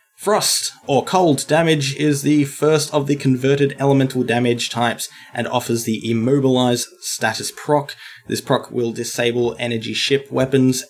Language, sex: English, male